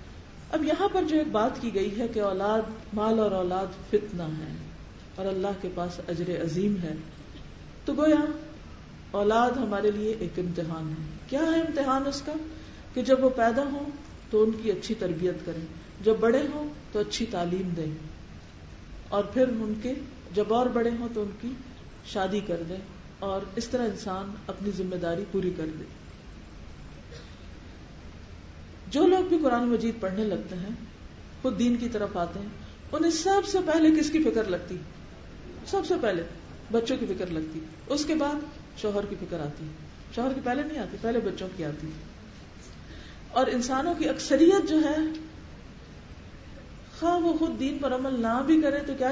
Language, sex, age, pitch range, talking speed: Urdu, female, 40-59, 175-260 Hz, 175 wpm